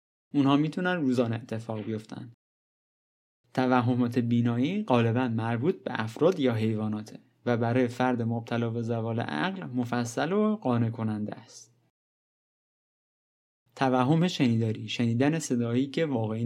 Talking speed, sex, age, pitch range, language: 115 wpm, male, 30-49, 115-140 Hz, Persian